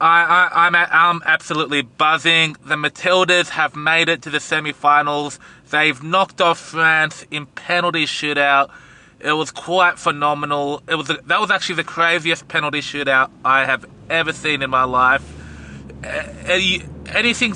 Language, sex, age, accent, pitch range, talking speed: English, male, 20-39, Australian, 140-165 Hz, 150 wpm